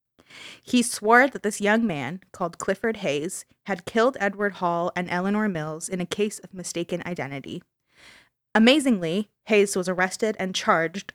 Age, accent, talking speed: 20-39, American, 150 wpm